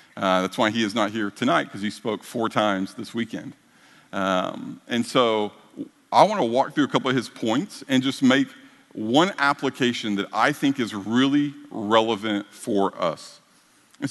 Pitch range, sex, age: 115-145 Hz, male, 50-69